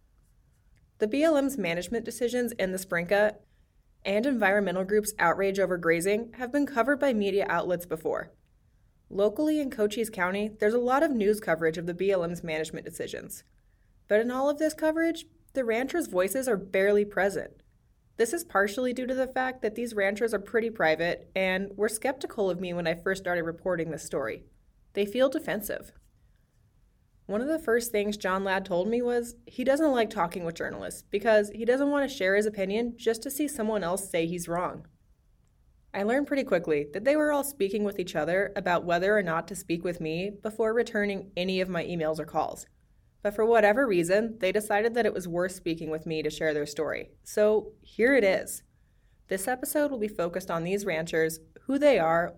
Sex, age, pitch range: female, 20-39, 180-240 Hz